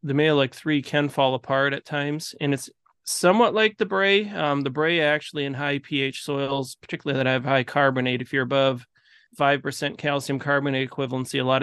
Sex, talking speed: male, 185 wpm